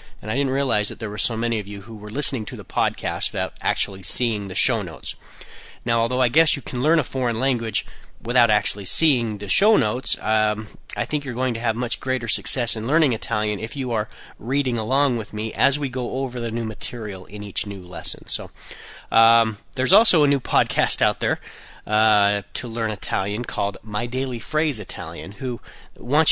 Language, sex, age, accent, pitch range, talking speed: Italian, male, 40-59, American, 105-130 Hz, 205 wpm